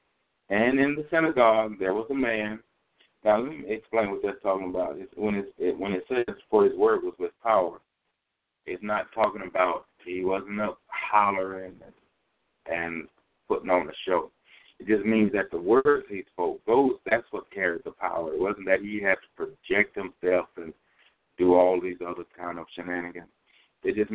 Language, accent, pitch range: English, American, 95-125 Hz